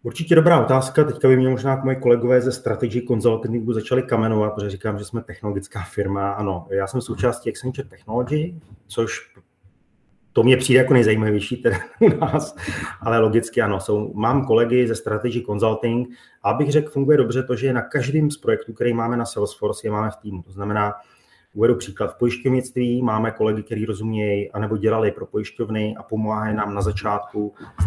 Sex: male